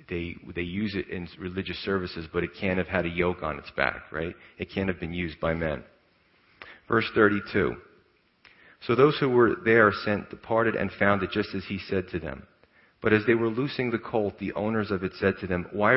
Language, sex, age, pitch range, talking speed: English, male, 40-59, 95-115 Hz, 220 wpm